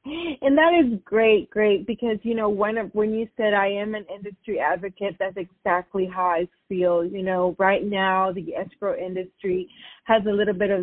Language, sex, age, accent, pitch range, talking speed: English, female, 30-49, American, 180-215 Hz, 190 wpm